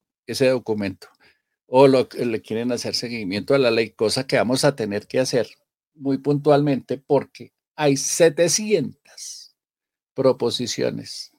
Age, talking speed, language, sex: 50-69, 120 wpm, Spanish, male